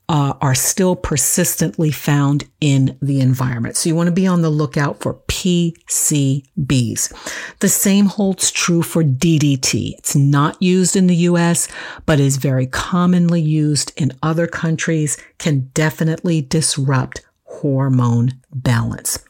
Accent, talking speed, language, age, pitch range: American, 135 wpm, English, 50-69, 140-170 Hz